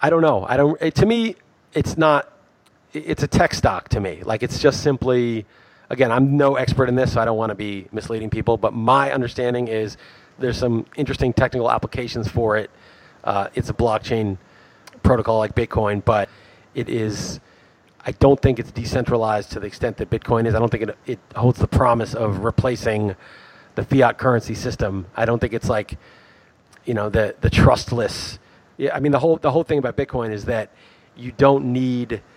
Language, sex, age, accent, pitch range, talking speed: English, male, 30-49, American, 110-135 Hz, 195 wpm